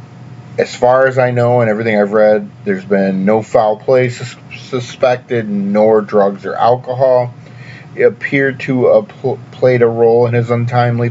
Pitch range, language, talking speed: 105-135 Hz, English, 165 wpm